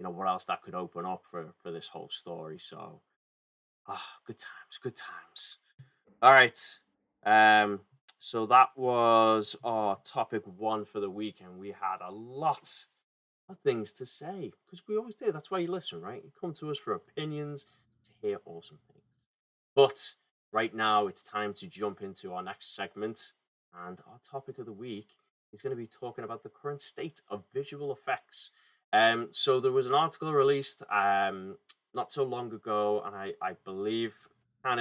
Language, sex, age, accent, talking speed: English, male, 20-39, British, 185 wpm